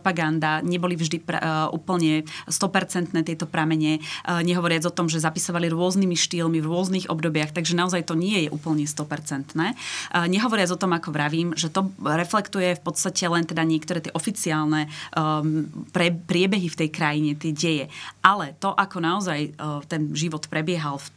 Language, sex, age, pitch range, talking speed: Slovak, female, 30-49, 155-180 Hz, 160 wpm